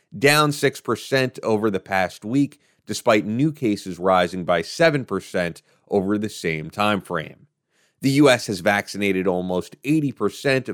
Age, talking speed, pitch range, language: 30-49, 130 wpm, 95-135 Hz, English